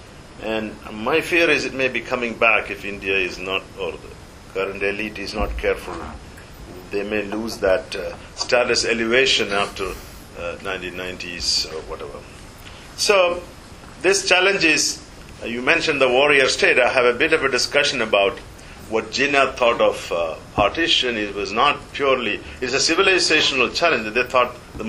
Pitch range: 110-165 Hz